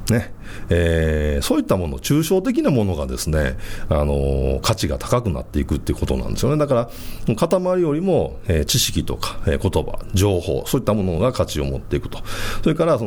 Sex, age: male, 40-59